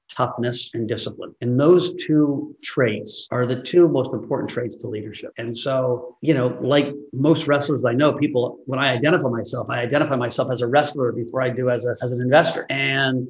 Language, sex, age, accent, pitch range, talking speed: English, male, 50-69, American, 115-145 Hz, 200 wpm